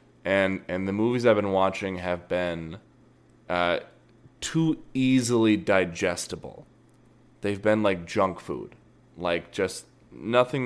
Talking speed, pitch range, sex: 120 wpm, 90-120 Hz, male